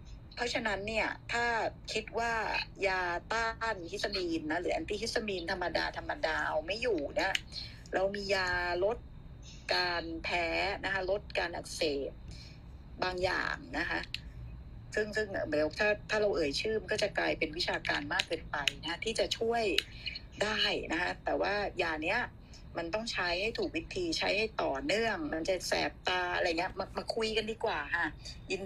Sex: female